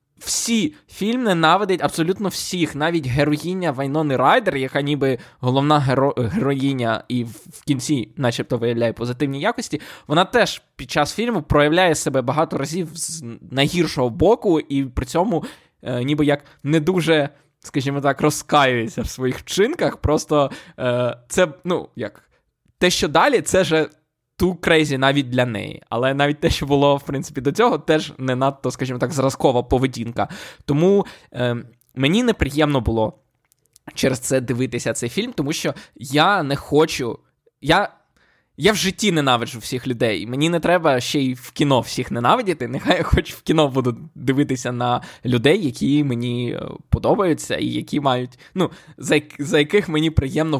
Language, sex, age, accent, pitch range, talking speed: Ukrainian, male, 20-39, native, 130-160 Hz, 155 wpm